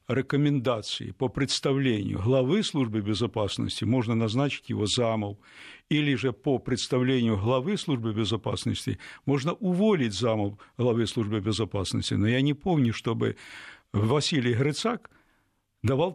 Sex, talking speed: male, 115 wpm